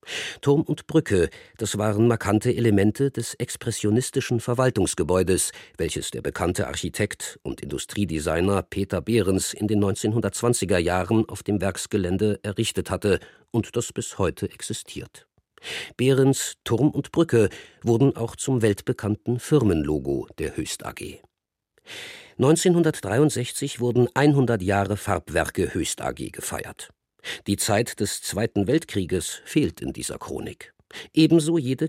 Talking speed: 120 wpm